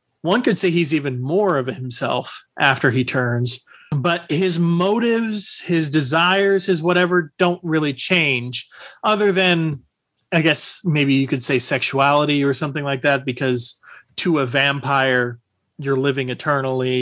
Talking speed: 145 wpm